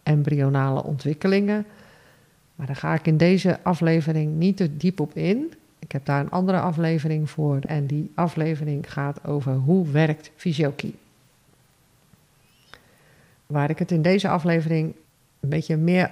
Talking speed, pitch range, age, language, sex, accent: 140 wpm, 140-170 Hz, 50-69, Dutch, female, Dutch